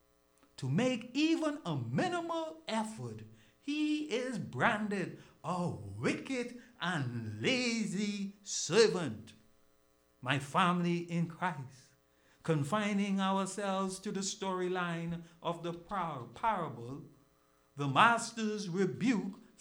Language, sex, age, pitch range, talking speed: English, male, 60-79, 175-235 Hz, 90 wpm